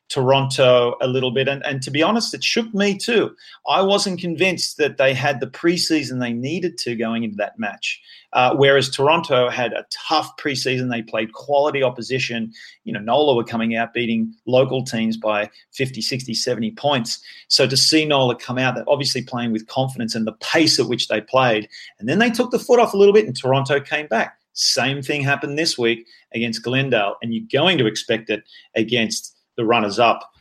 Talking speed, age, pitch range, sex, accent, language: 200 wpm, 30-49, 115-140 Hz, male, Australian, English